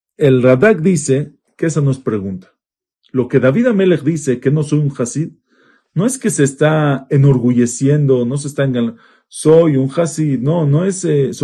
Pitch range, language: 140-195 Hz, Spanish